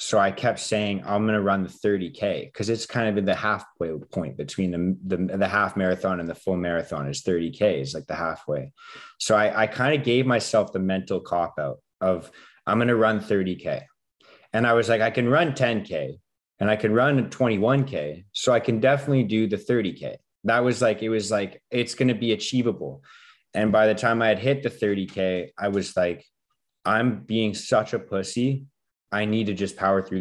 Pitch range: 95-120 Hz